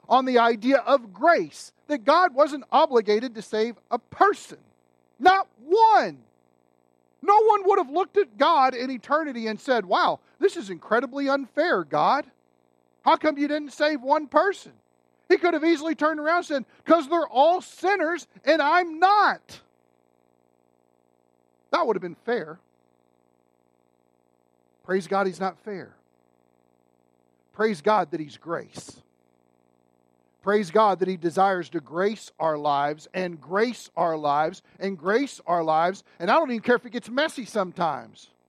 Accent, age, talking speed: American, 40-59, 150 wpm